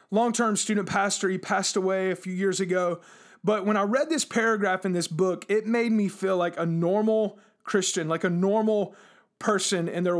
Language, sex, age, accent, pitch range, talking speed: English, male, 30-49, American, 185-225 Hz, 195 wpm